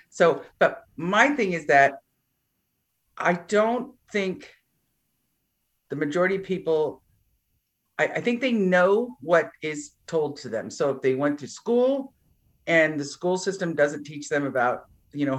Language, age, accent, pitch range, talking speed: English, 50-69, American, 140-185 Hz, 150 wpm